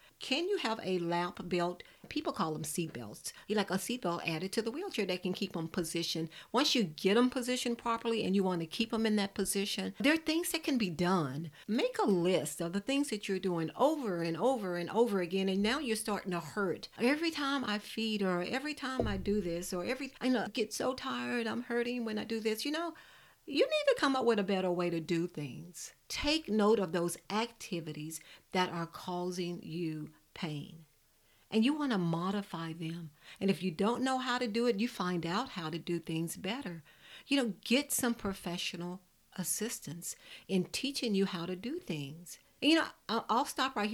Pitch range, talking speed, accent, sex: 175-240 Hz, 210 wpm, American, female